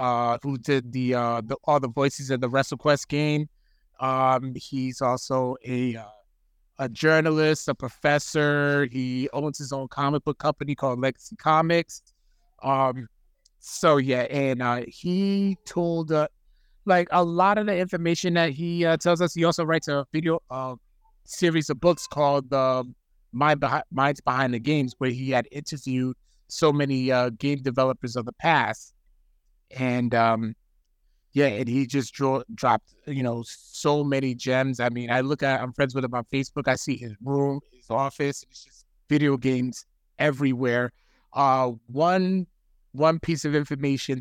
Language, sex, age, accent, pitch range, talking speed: English, male, 30-49, American, 125-145 Hz, 165 wpm